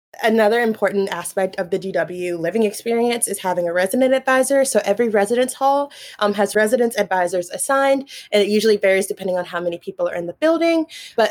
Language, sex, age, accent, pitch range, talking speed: English, female, 20-39, American, 190-225 Hz, 190 wpm